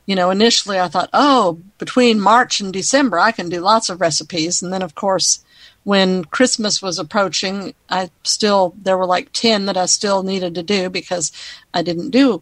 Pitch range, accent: 185-220 Hz, American